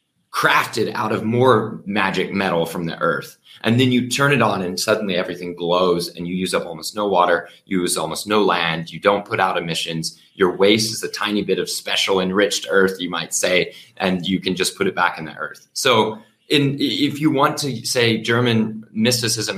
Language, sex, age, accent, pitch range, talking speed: English, male, 30-49, American, 95-125 Hz, 210 wpm